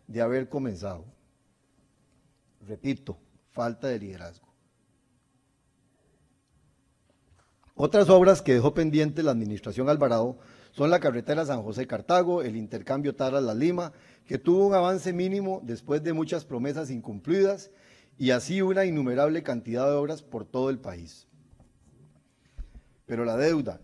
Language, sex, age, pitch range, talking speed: Spanish, male, 40-59, 125-165 Hz, 125 wpm